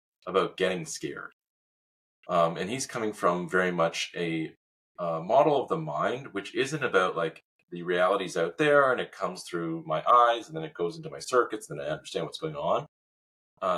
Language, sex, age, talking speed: English, male, 30-49, 190 wpm